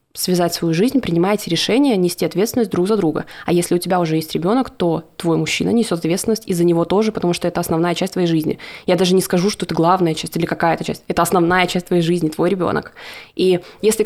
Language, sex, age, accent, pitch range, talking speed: Russian, female, 20-39, native, 170-200 Hz, 220 wpm